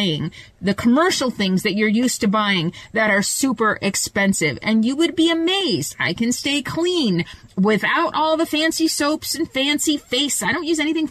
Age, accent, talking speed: 30-49, American, 180 wpm